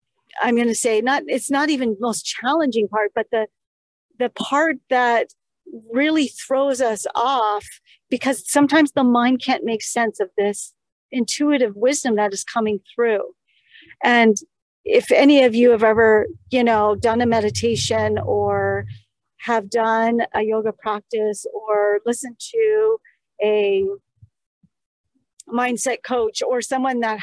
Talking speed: 140 wpm